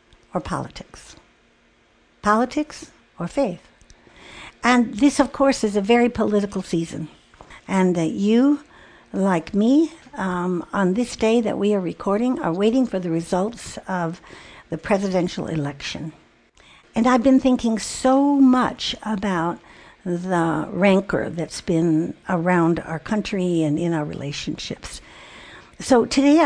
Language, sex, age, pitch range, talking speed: English, female, 60-79, 170-235 Hz, 130 wpm